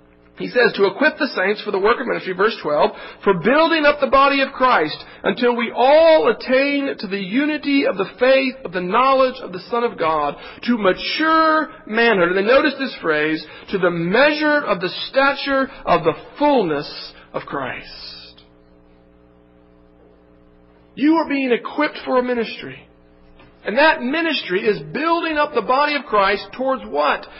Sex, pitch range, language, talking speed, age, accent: male, 185-280 Hz, French, 165 wpm, 50-69, American